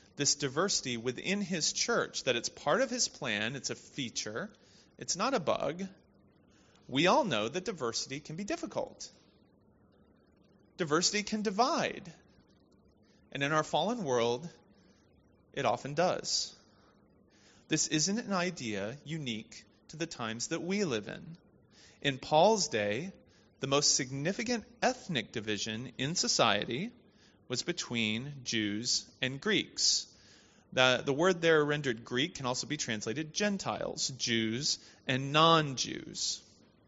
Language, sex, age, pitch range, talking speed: English, male, 30-49, 115-175 Hz, 125 wpm